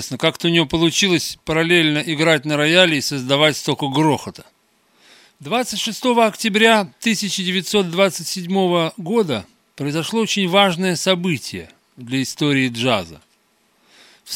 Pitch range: 145-195 Hz